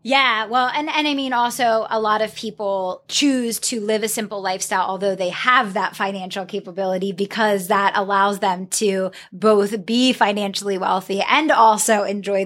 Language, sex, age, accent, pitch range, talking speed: English, female, 20-39, American, 195-225 Hz, 170 wpm